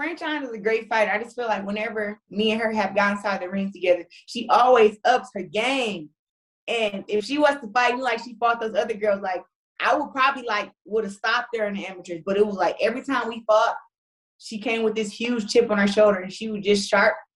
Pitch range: 200-245 Hz